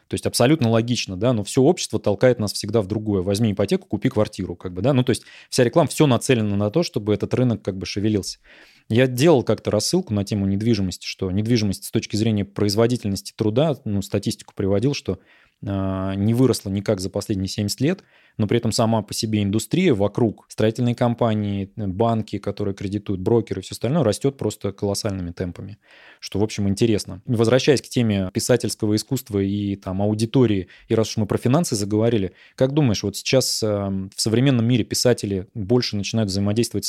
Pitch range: 100-120 Hz